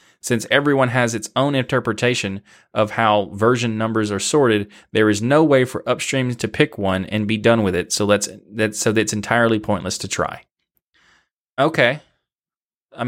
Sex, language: male, English